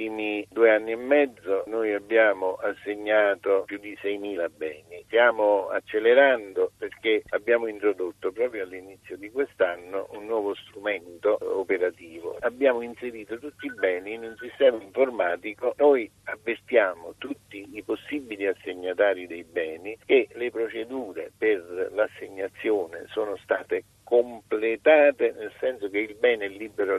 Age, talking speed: 50-69, 125 wpm